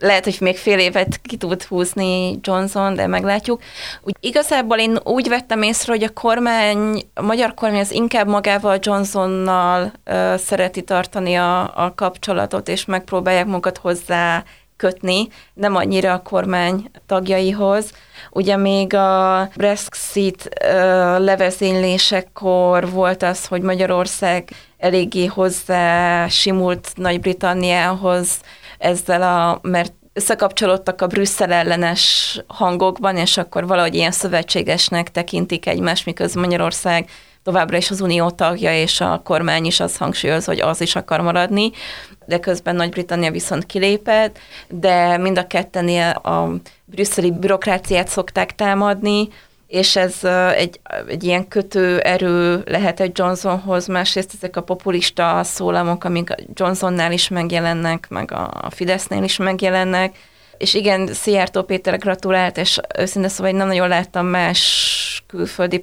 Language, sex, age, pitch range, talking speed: Hungarian, female, 20-39, 180-195 Hz, 130 wpm